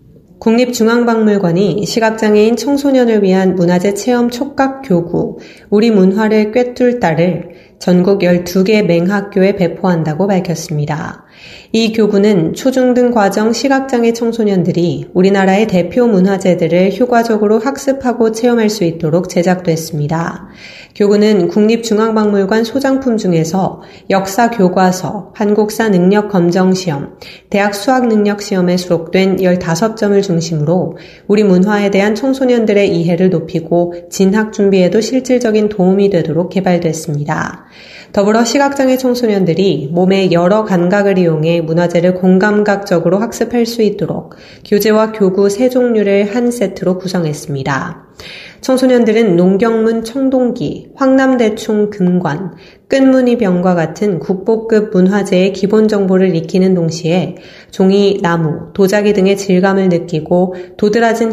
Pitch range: 180-220 Hz